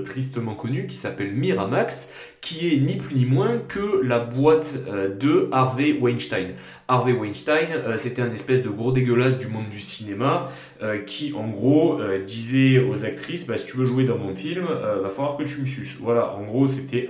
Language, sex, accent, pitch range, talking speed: French, male, French, 105-140 Hz, 205 wpm